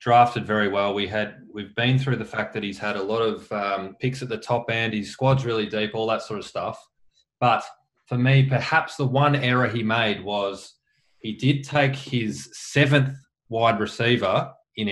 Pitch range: 105-125 Hz